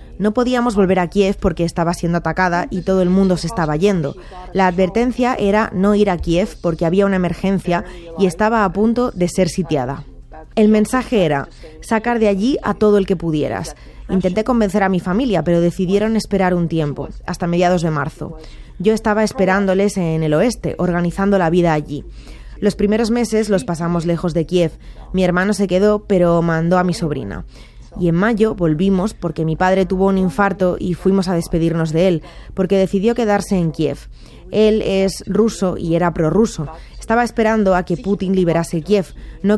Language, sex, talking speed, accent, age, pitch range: Spanish, female, 185 wpm, Spanish, 20-39, 170-205 Hz